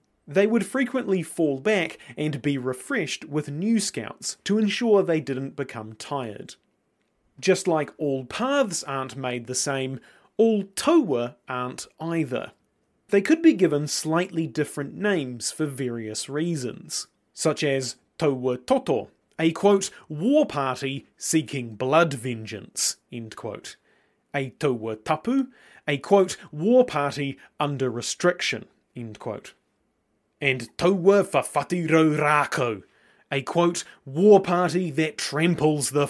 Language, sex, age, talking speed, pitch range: English, male, 30-49, 120 wpm, 130-185 Hz